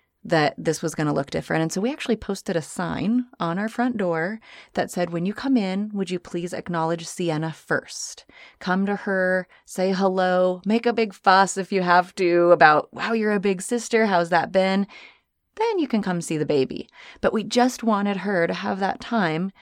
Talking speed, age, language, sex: 205 wpm, 30-49, English, female